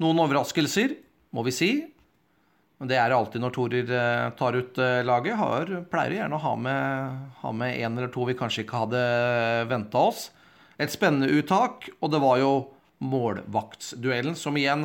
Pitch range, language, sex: 120-155 Hz, English, male